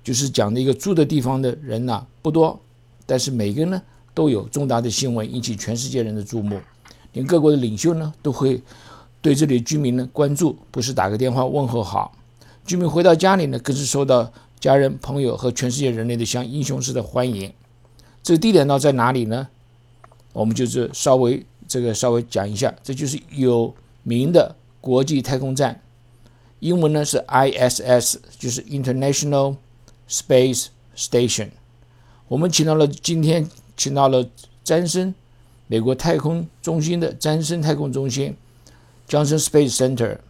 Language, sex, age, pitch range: Chinese, male, 50-69, 120-145 Hz